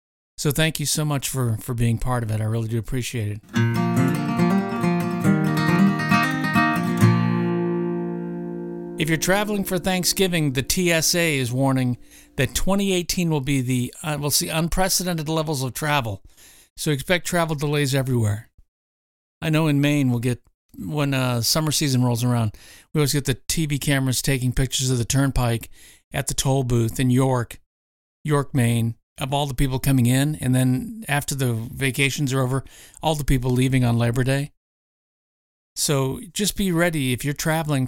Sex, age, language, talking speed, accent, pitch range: male, 50-69, English, 160 wpm, American, 120-160 Hz